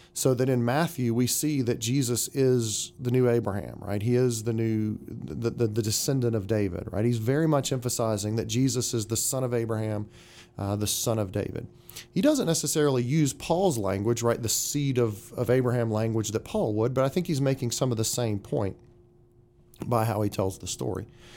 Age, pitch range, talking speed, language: 40-59, 110-135 Hz, 200 wpm, English